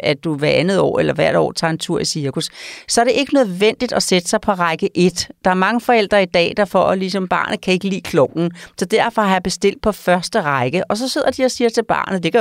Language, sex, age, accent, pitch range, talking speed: Danish, female, 40-59, native, 160-220 Hz, 275 wpm